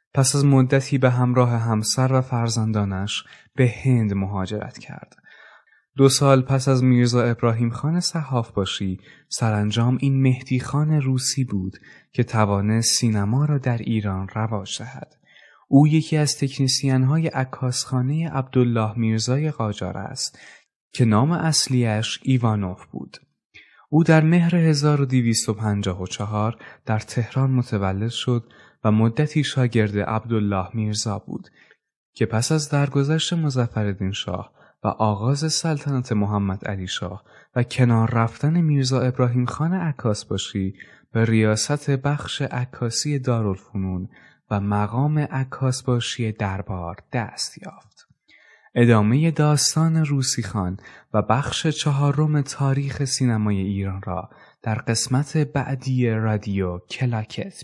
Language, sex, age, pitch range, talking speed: Persian, male, 20-39, 105-140 Hz, 115 wpm